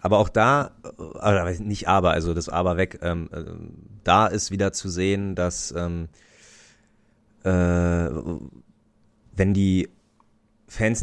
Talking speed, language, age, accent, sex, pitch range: 115 wpm, German, 30-49, German, male, 85-100 Hz